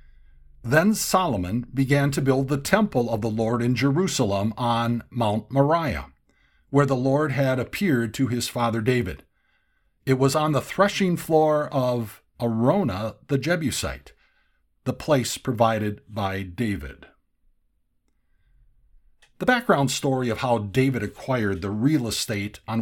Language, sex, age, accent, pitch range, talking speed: English, male, 50-69, American, 105-145 Hz, 130 wpm